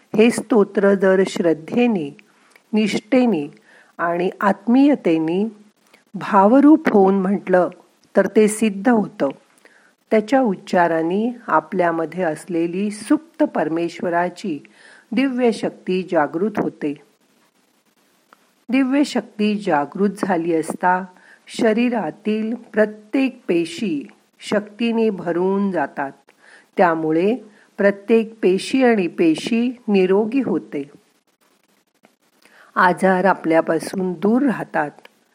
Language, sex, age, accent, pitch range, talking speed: Marathi, female, 50-69, native, 170-230 Hz, 70 wpm